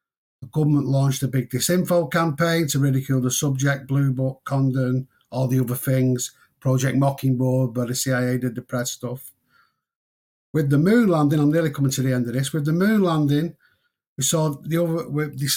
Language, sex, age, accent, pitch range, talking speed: English, male, 50-69, British, 130-155 Hz, 180 wpm